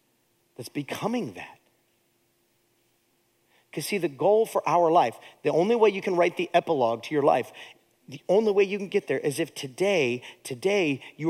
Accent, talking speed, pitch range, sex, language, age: American, 175 wpm, 165-265 Hz, male, English, 40-59